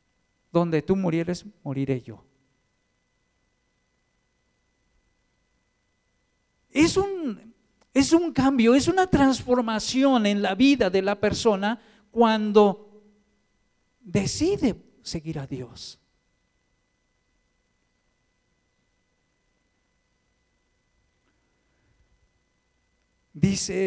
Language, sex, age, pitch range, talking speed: Spanish, male, 50-69, 150-230 Hz, 65 wpm